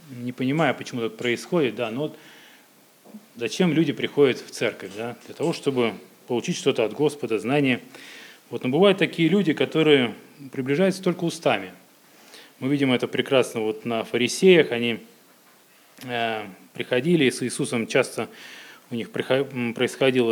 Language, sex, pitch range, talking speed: Russian, male, 120-155 Hz, 135 wpm